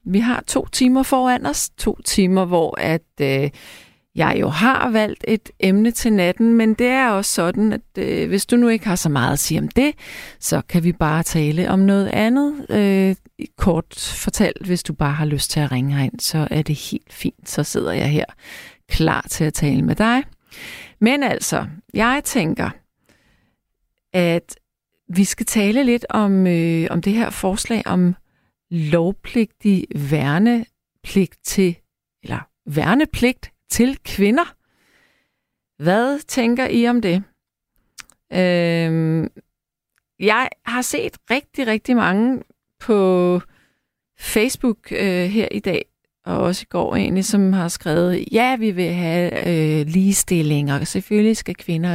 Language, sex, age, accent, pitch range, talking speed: Danish, female, 40-59, native, 165-230 Hz, 150 wpm